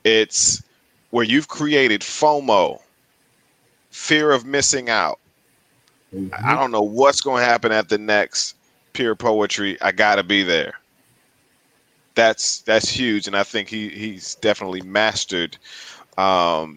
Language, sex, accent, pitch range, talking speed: English, male, American, 90-115 Hz, 130 wpm